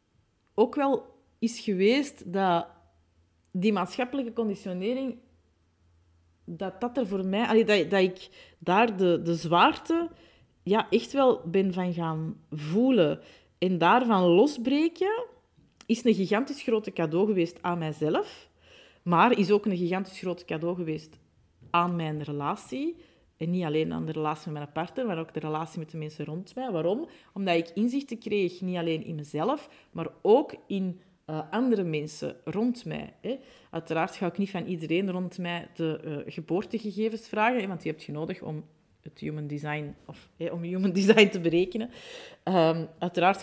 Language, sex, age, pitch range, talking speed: Dutch, female, 30-49, 165-225 Hz, 160 wpm